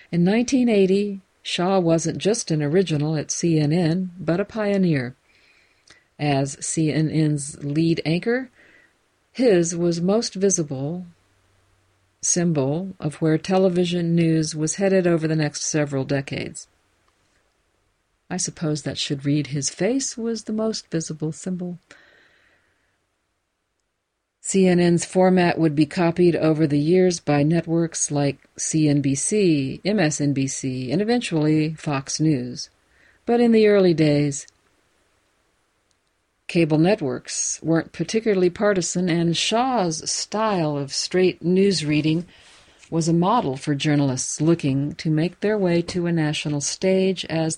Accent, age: American, 50-69